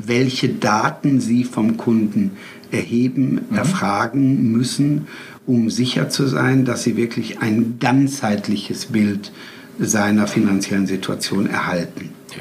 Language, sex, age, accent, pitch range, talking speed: German, male, 60-79, German, 105-130 Hz, 105 wpm